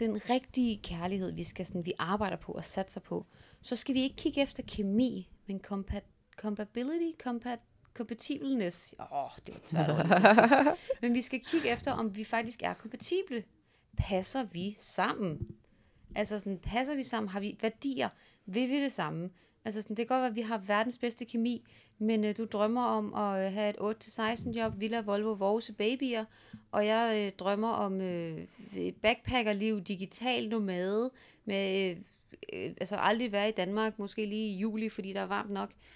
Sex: female